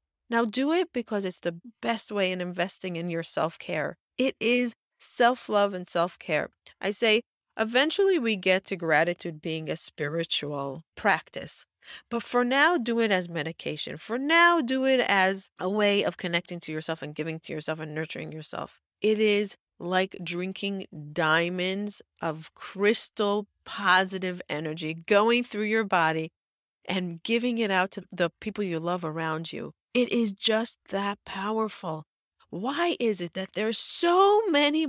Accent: American